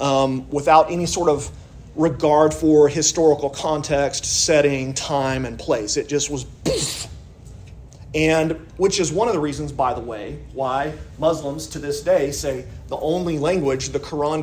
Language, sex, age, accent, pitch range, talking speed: English, male, 40-59, American, 130-165 Hz, 160 wpm